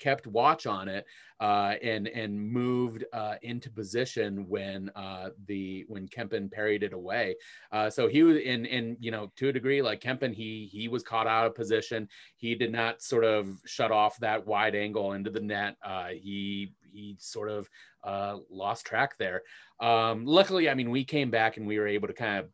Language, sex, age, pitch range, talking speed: English, male, 30-49, 100-115 Hz, 200 wpm